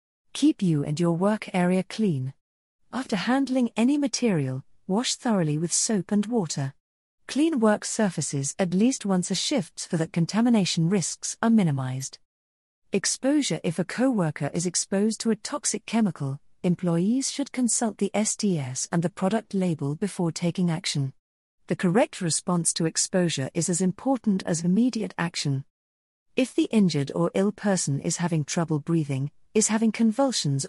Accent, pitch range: British, 160-215 Hz